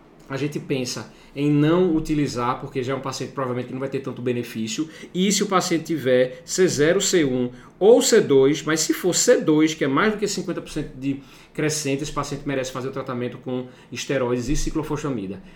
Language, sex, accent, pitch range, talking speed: Portuguese, male, Brazilian, 125-155 Hz, 195 wpm